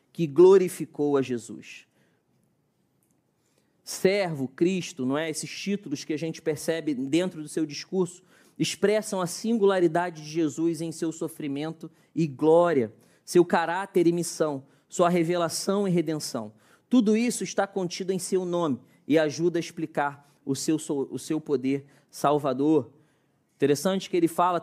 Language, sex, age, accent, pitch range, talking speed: Portuguese, male, 20-39, Brazilian, 155-180 Hz, 135 wpm